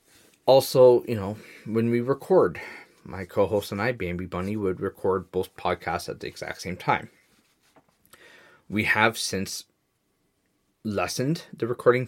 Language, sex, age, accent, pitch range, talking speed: English, male, 20-39, American, 90-120 Hz, 140 wpm